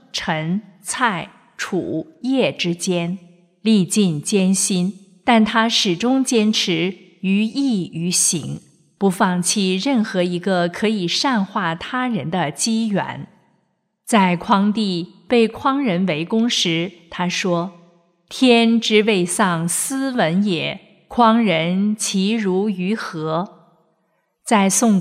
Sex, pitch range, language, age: female, 175-225 Hz, Chinese, 50-69